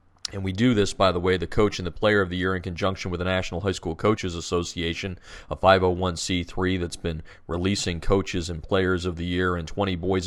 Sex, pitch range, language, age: male, 90-100 Hz, English, 40-59